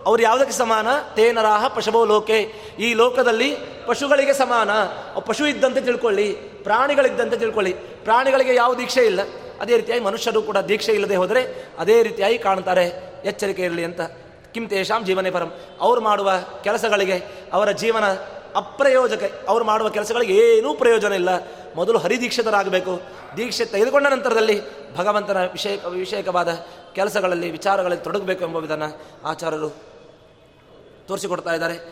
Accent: native